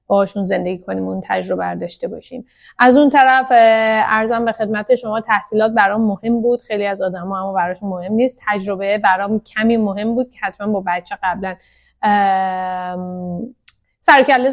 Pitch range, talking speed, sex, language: 200-255 Hz, 155 wpm, female, Persian